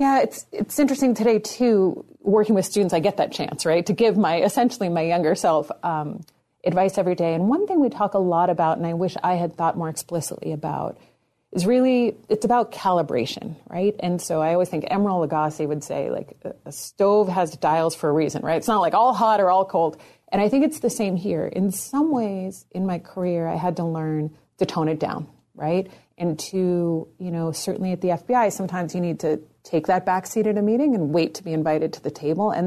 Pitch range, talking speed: 165-200 Hz, 230 wpm